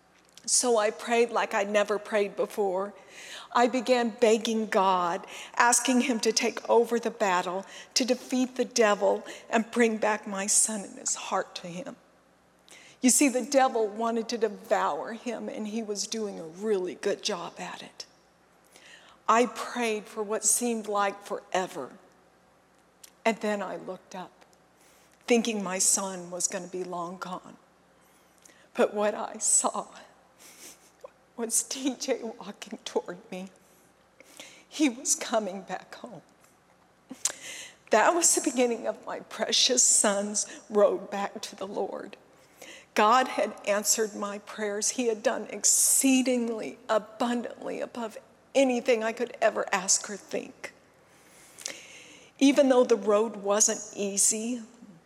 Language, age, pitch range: English, 50-69, 205-240 Hz